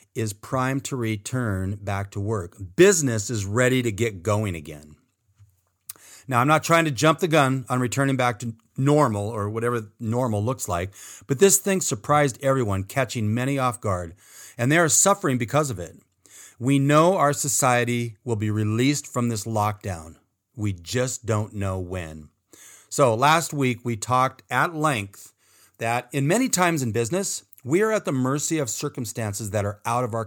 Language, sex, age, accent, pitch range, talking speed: English, male, 40-59, American, 105-140 Hz, 175 wpm